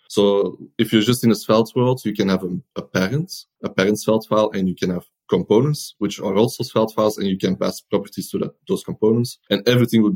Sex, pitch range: male, 95-110 Hz